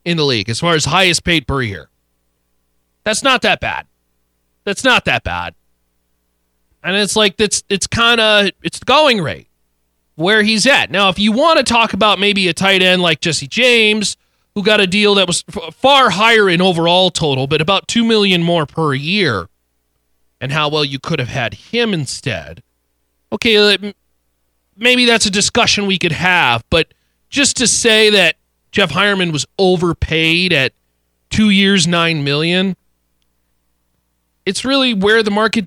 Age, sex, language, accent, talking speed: 30-49, male, English, American, 170 wpm